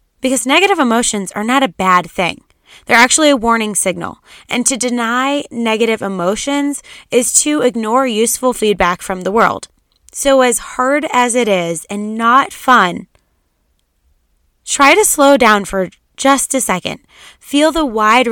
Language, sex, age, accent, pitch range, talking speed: English, female, 20-39, American, 200-260 Hz, 150 wpm